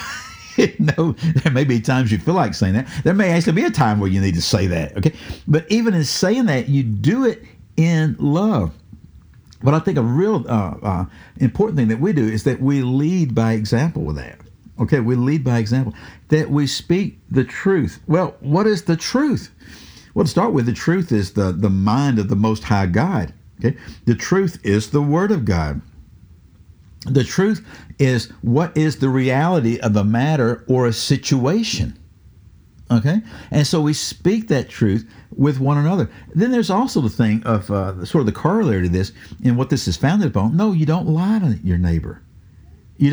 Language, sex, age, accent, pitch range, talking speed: English, male, 60-79, American, 105-160 Hz, 195 wpm